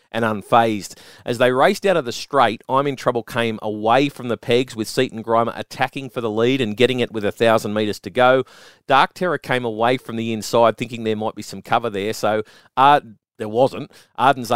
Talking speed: 215 wpm